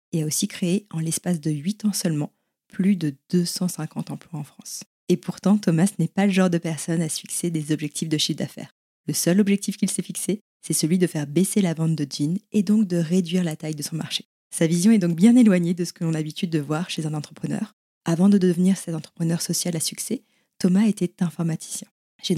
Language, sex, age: French, female, 20-39